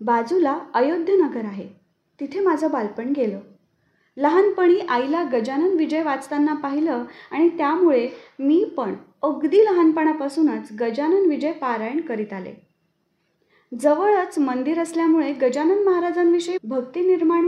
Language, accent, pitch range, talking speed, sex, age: Marathi, native, 245-325 Hz, 105 wpm, female, 30-49